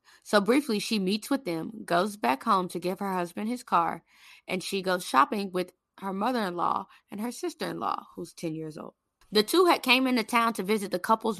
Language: English